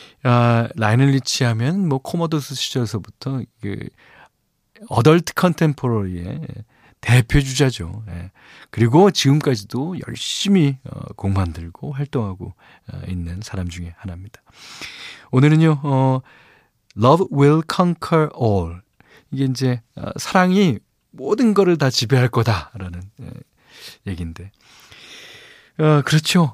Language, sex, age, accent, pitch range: Korean, male, 40-59, native, 105-155 Hz